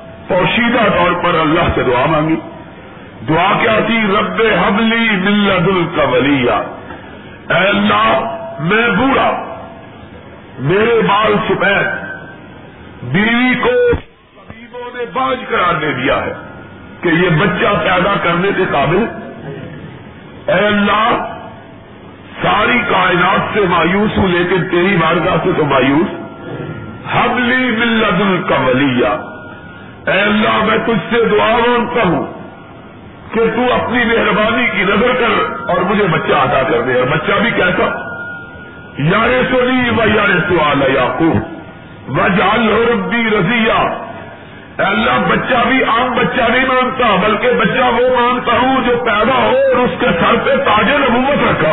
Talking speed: 130 wpm